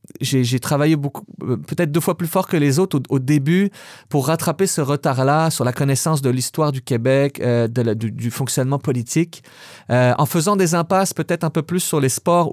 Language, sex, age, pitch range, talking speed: French, male, 30-49, 125-160 Hz, 215 wpm